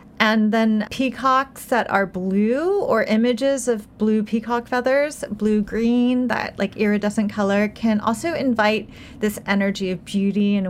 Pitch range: 195-235 Hz